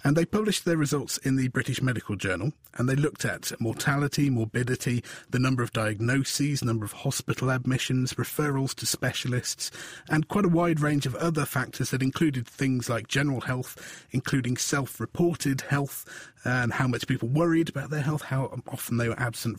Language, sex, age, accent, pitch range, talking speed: English, male, 40-59, British, 115-145 Hz, 175 wpm